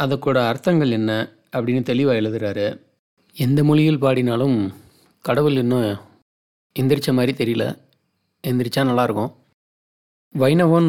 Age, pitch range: 30-49, 110-140 Hz